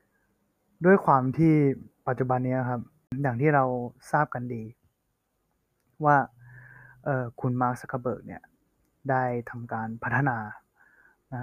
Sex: male